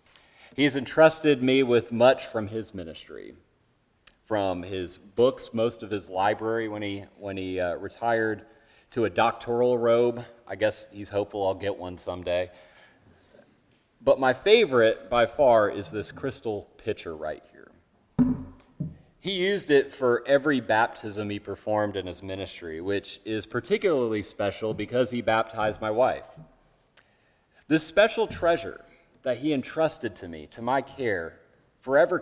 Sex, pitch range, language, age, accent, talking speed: male, 100-135 Hz, English, 30-49, American, 140 wpm